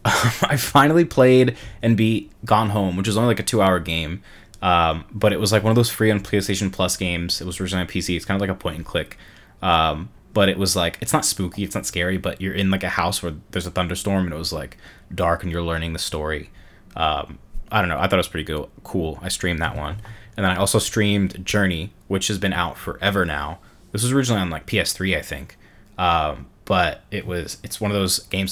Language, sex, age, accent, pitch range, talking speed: English, male, 20-39, American, 90-105 Hz, 240 wpm